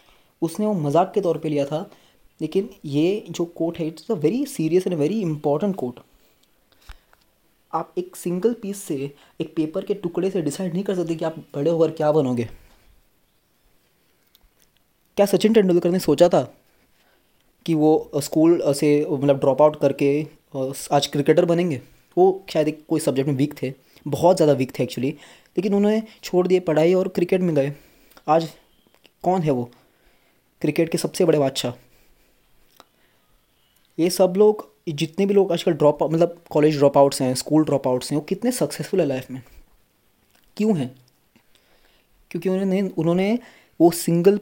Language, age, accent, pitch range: Hindi, 20-39, native, 145-180 Hz